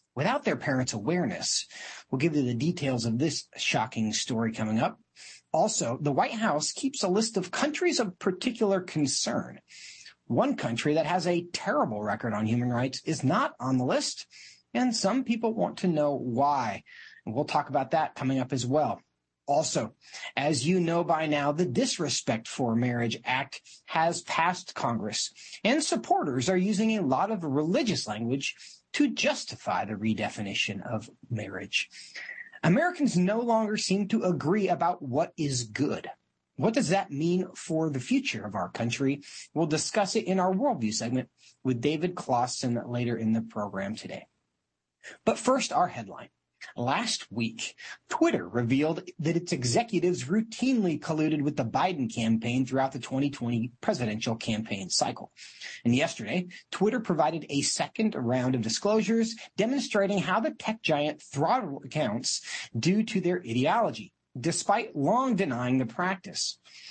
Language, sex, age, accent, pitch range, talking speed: English, male, 40-59, American, 120-195 Hz, 150 wpm